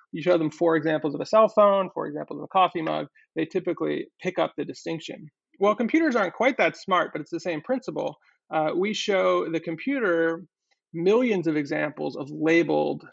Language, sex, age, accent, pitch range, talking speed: English, male, 30-49, American, 155-185 Hz, 190 wpm